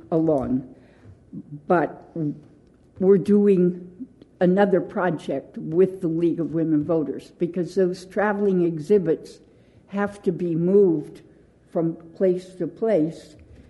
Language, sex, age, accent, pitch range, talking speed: English, female, 60-79, American, 160-190 Hz, 105 wpm